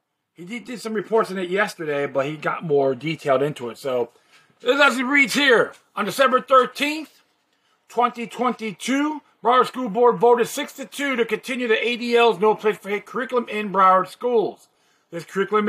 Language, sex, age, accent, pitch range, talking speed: English, male, 40-59, American, 180-245 Hz, 170 wpm